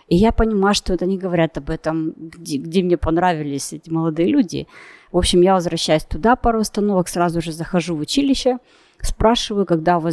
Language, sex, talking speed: Russian, female, 190 wpm